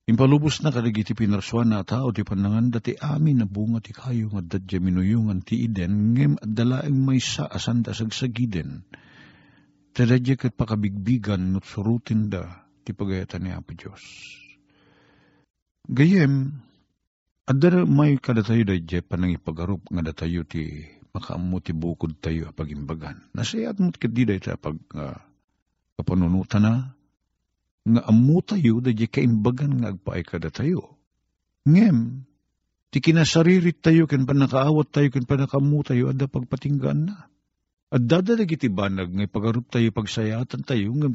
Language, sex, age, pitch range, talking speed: Filipino, male, 50-69, 95-130 Hz, 130 wpm